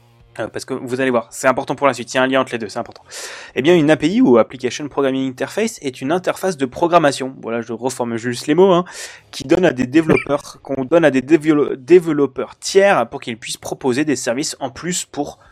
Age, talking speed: 20-39, 230 wpm